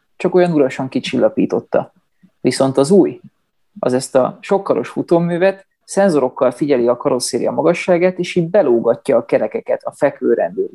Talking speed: 140 wpm